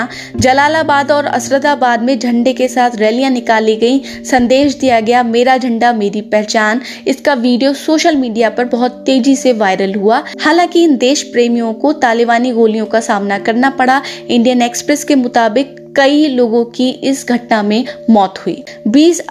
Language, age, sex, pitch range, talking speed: Hindi, 20-39, female, 235-285 Hz, 160 wpm